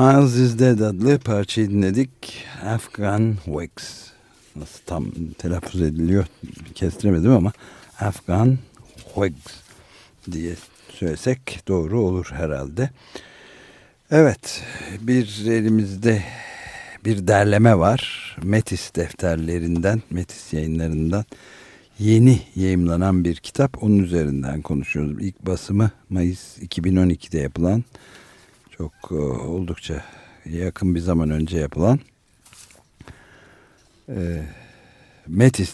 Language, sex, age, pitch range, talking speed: Turkish, male, 60-79, 85-115 Hz, 85 wpm